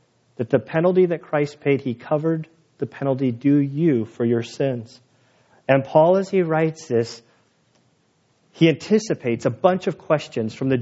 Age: 40-59